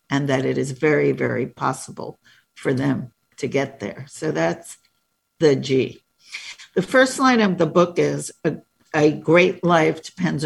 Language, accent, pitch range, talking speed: English, American, 140-175 Hz, 160 wpm